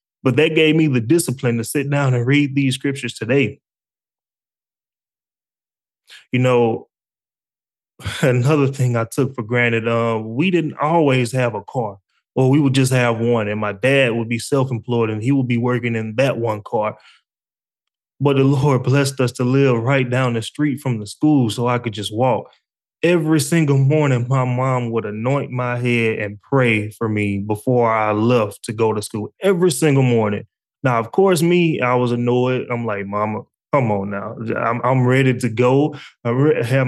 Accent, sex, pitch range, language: American, male, 115-140 Hz, English